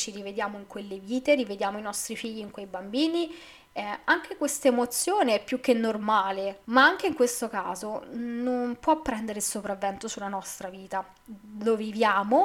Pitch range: 200-255 Hz